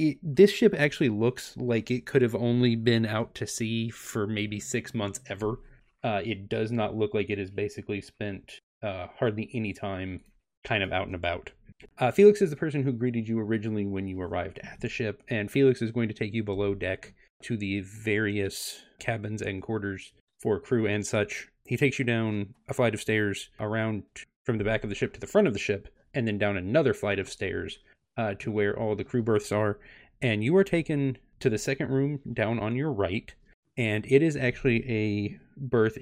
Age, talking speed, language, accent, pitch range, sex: 30-49, 210 wpm, English, American, 100-125 Hz, male